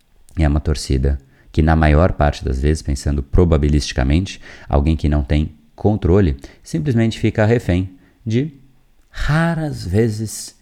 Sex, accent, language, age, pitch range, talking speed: male, Brazilian, Portuguese, 30-49, 80-120 Hz, 125 wpm